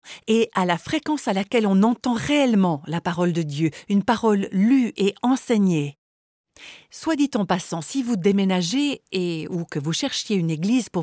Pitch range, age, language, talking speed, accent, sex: 180-245 Hz, 50-69, French, 180 wpm, French, female